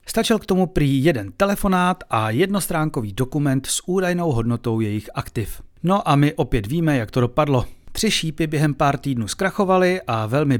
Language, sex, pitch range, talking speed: Czech, male, 120-170 Hz, 170 wpm